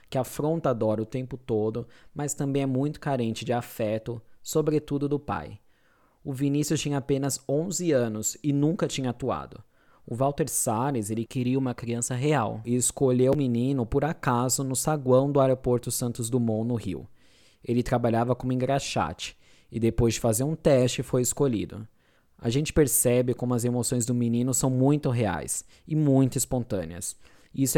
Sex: male